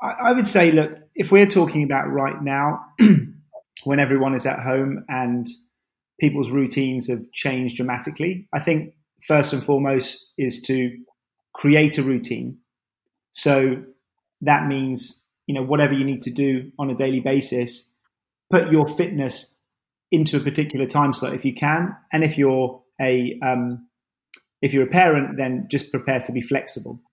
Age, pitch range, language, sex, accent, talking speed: 30-49, 130-155 Hz, English, male, British, 155 wpm